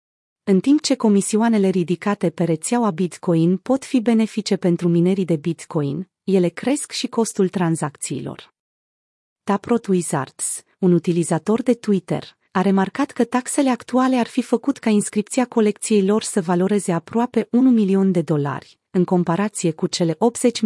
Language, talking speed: Romanian, 145 wpm